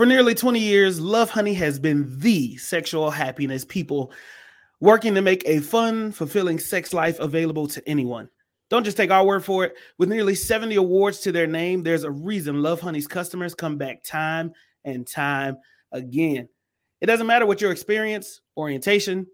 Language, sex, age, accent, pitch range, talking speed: English, male, 30-49, American, 150-205 Hz, 175 wpm